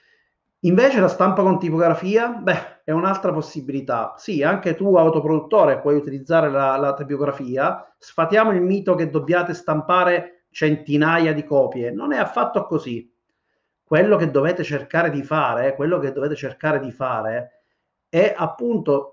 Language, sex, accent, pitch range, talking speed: Italian, male, native, 145-185 Hz, 140 wpm